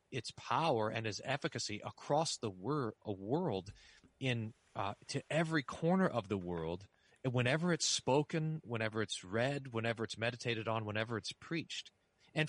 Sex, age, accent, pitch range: male, 40-59, American, 110-150 Hz